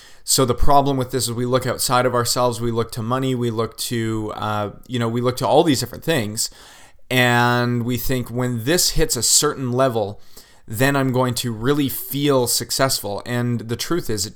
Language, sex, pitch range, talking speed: English, male, 115-130 Hz, 205 wpm